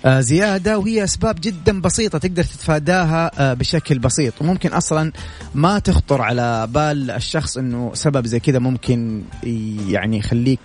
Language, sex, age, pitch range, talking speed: Arabic, male, 30-49, 125-160 Hz, 130 wpm